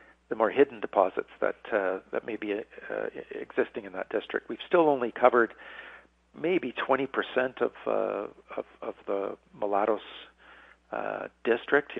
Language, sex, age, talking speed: English, male, 50-69, 145 wpm